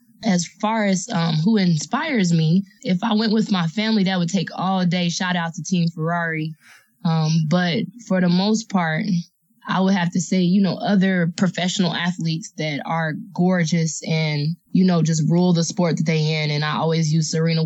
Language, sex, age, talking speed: English, female, 20-39, 195 wpm